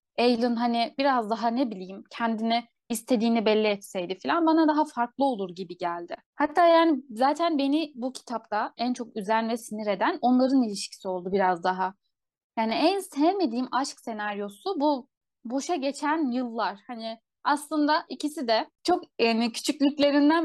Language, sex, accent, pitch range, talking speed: Turkish, female, native, 220-295 Hz, 145 wpm